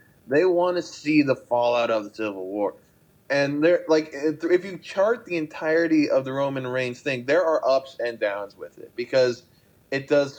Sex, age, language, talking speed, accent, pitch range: male, 20-39, English, 195 wpm, American, 110-150 Hz